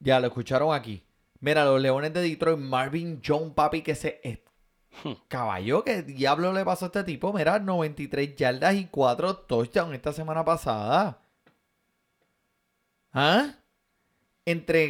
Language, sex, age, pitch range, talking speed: Spanish, male, 30-49, 135-165 Hz, 135 wpm